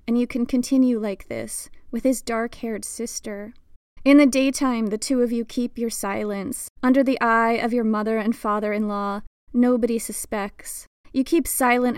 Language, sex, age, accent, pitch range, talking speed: English, female, 20-39, American, 215-245 Hz, 165 wpm